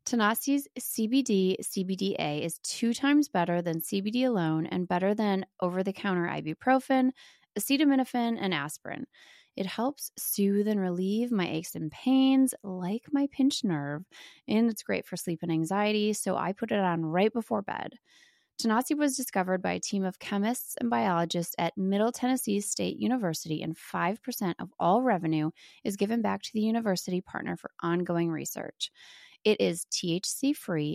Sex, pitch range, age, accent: female, 180-240 Hz, 20-39, American